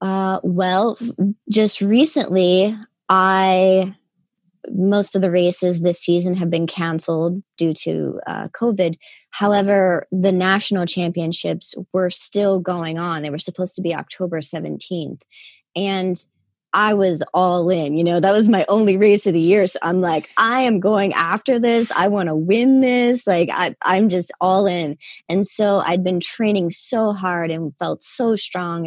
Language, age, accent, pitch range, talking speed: English, 20-39, American, 175-200 Hz, 165 wpm